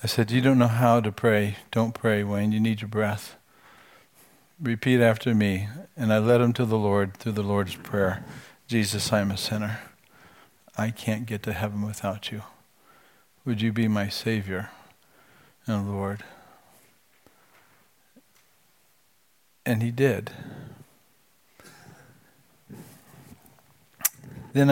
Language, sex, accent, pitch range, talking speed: English, male, American, 105-130 Hz, 125 wpm